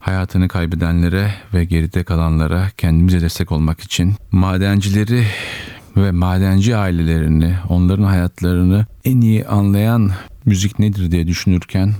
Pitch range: 85-100 Hz